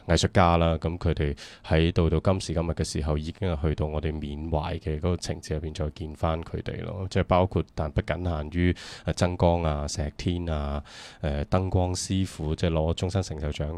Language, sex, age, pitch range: Chinese, male, 20-39, 80-95 Hz